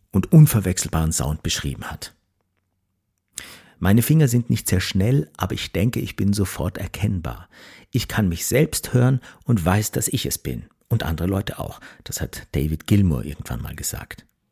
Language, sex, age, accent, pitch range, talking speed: German, male, 50-69, German, 95-135 Hz, 165 wpm